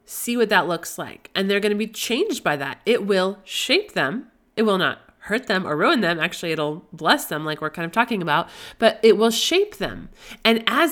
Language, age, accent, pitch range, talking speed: English, 30-49, American, 175-225 Hz, 225 wpm